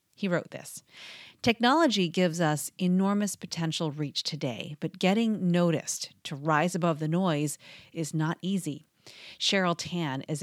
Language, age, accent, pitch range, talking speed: English, 40-59, American, 155-195 Hz, 140 wpm